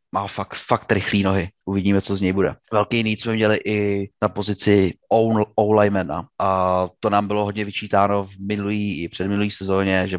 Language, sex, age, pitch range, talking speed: Slovak, male, 30-49, 95-115 Hz, 185 wpm